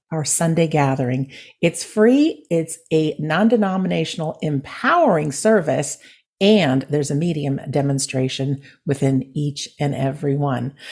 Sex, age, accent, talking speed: female, 50-69, American, 115 wpm